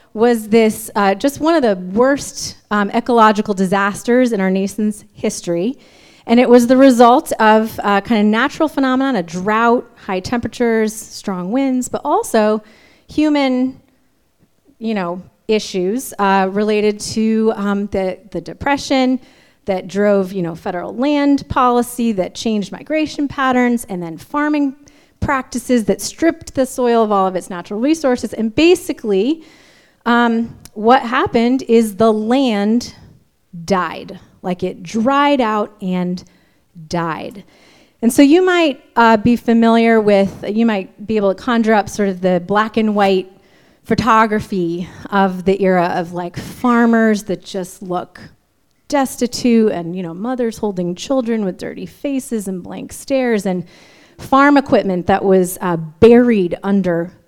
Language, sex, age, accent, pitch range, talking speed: English, female, 30-49, American, 190-250 Hz, 145 wpm